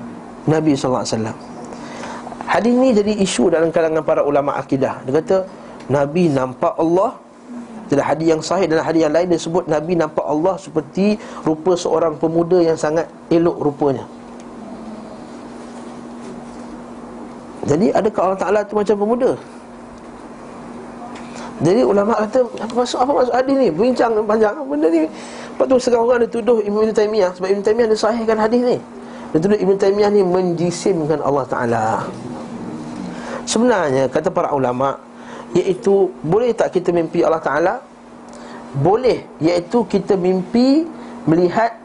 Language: Malay